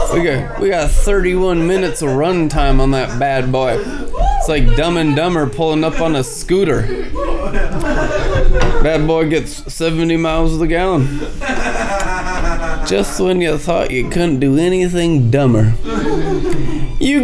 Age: 20-39